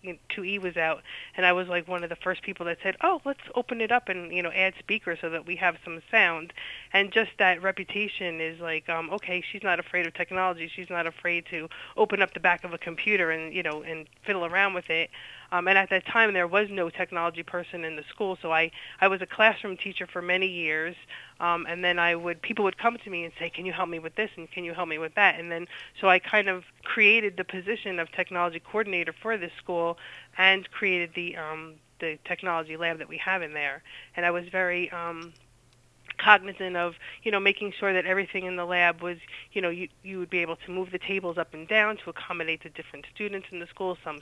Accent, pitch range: American, 170-190 Hz